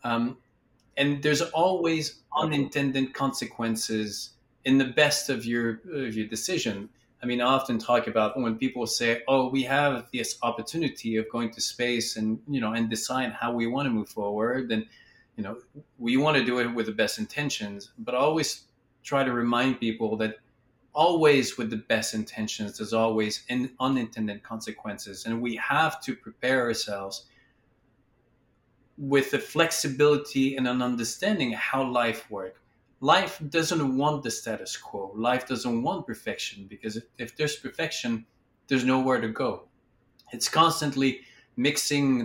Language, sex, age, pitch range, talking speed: English, male, 30-49, 115-135 Hz, 160 wpm